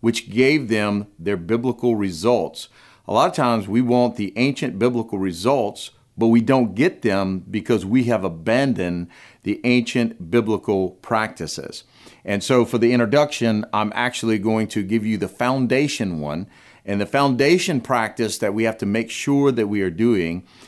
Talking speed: 165 wpm